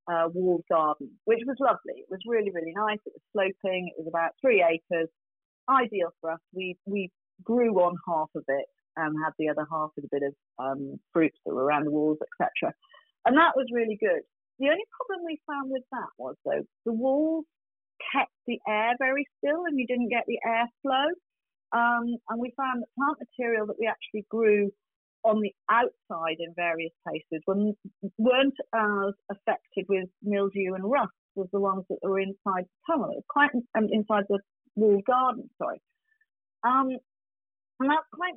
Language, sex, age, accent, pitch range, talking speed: English, female, 40-59, British, 180-260 Hz, 190 wpm